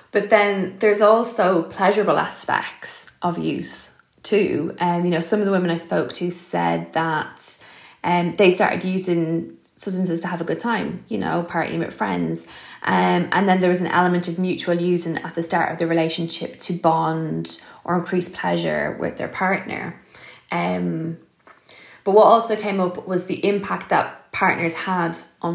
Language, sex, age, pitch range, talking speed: English, female, 20-39, 165-190 Hz, 170 wpm